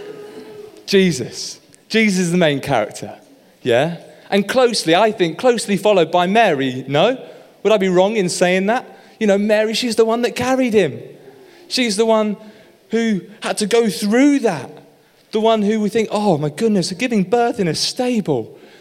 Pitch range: 160-215 Hz